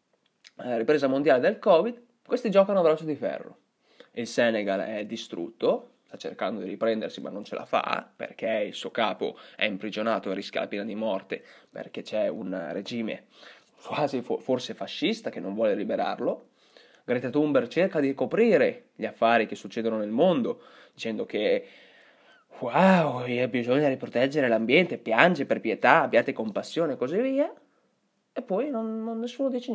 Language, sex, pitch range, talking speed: Italian, male, 135-230 Hz, 155 wpm